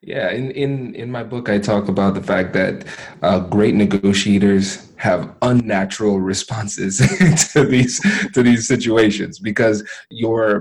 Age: 20-39